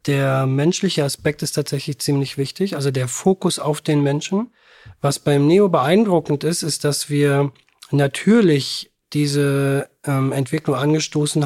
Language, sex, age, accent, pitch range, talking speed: German, male, 40-59, German, 140-160 Hz, 135 wpm